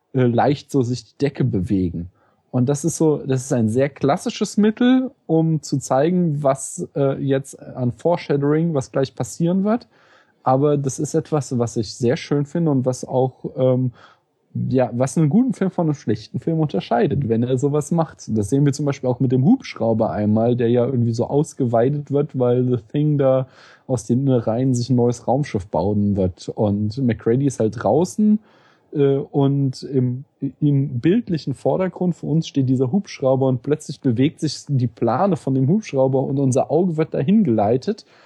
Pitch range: 125-155 Hz